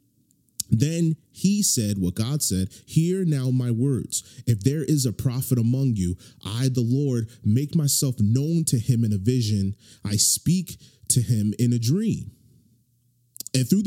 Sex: male